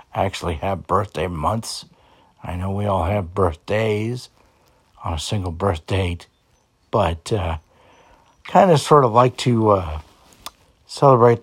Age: 60-79